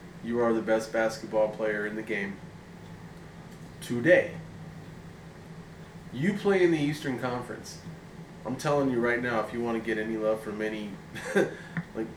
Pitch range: 110-160 Hz